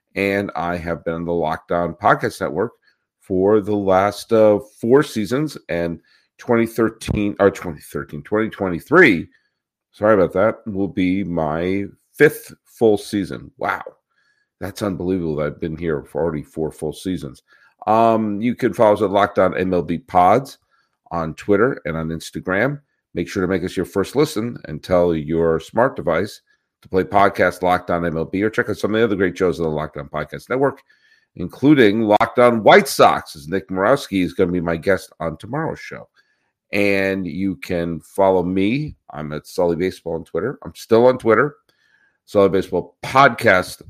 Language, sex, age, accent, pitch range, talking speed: English, male, 50-69, American, 85-105 Hz, 165 wpm